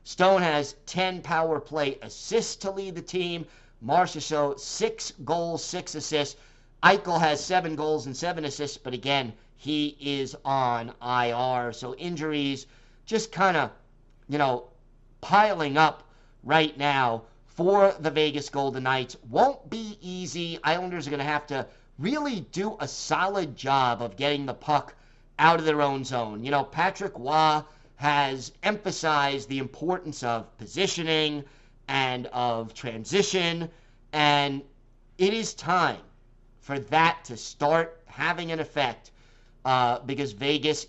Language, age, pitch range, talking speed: English, 50-69, 125-165 Hz, 140 wpm